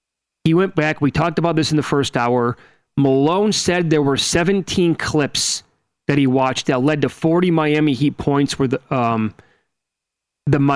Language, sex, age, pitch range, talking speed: English, male, 30-49, 140-165 Hz, 165 wpm